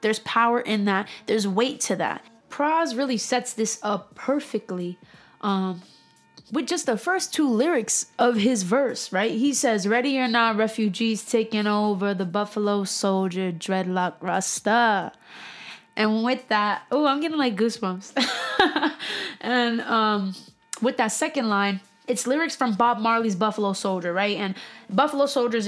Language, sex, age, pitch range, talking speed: English, female, 20-39, 200-240 Hz, 145 wpm